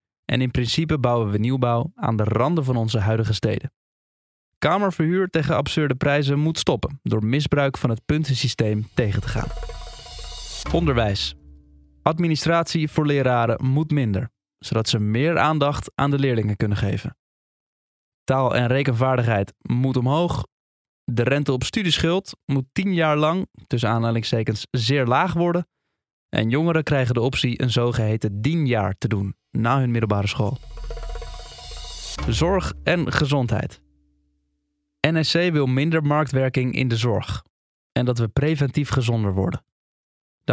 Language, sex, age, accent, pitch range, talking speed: Dutch, male, 20-39, Dutch, 110-150 Hz, 135 wpm